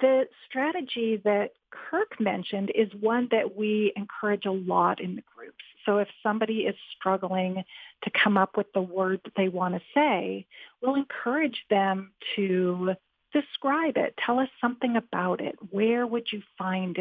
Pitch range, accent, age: 200-260 Hz, American, 40-59